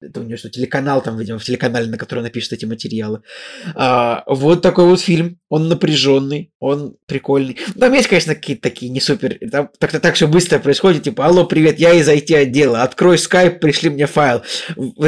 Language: Russian